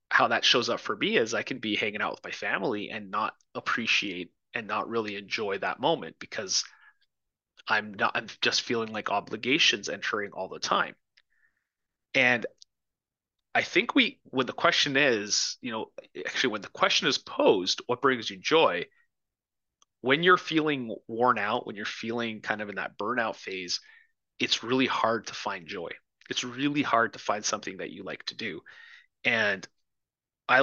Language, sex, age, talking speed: English, male, 30-49, 175 wpm